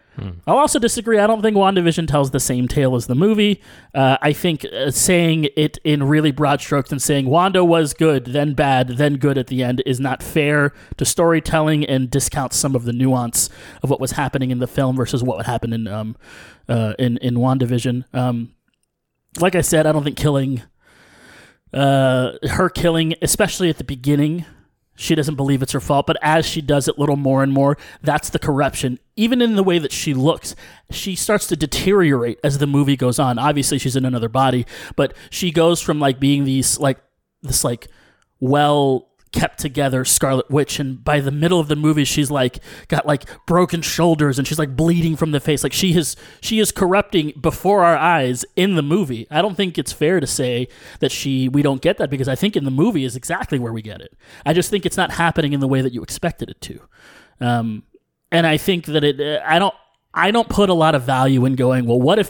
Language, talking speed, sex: English, 215 wpm, male